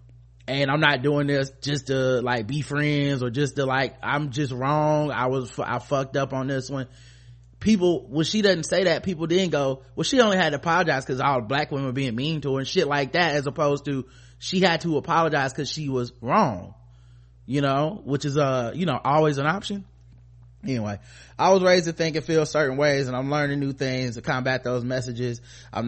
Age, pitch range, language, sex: 20-39, 120-145 Hz, English, male